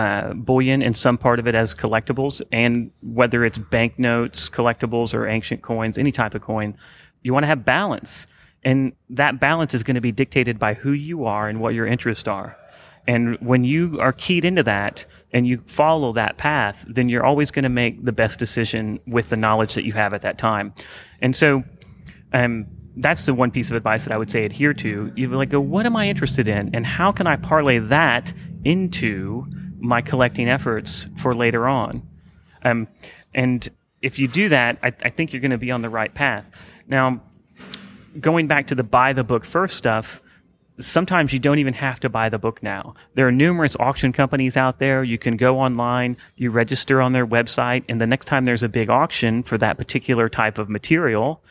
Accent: American